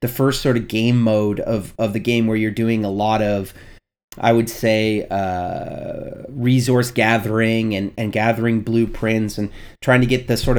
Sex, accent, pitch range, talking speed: male, American, 110-135 Hz, 180 wpm